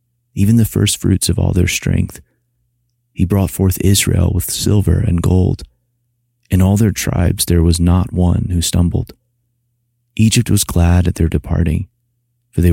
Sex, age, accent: male, 30-49, American